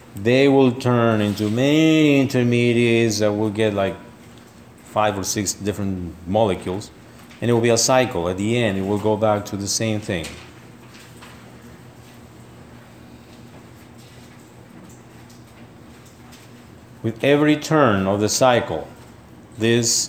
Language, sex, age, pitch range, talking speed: English, male, 50-69, 100-125 Hz, 115 wpm